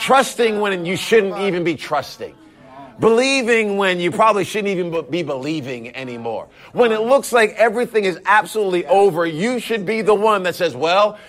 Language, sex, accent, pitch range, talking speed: English, male, American, 180-225 Hz, 170 wpm